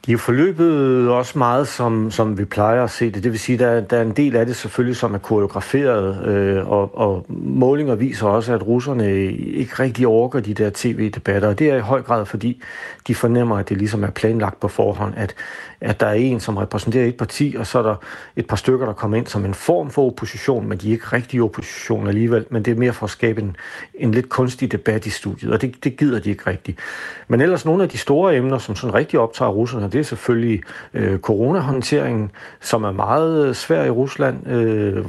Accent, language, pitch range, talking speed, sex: native, Danish, 105-125 Hz, 225 wpm, male